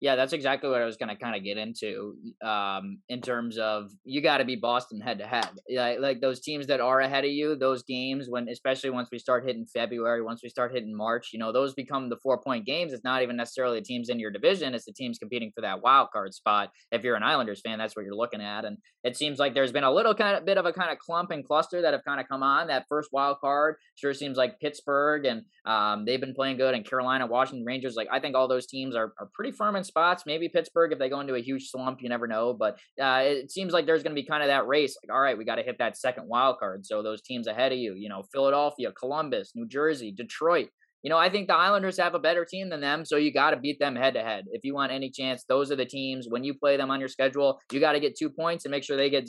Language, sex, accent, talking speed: English, male, American, 280 wpm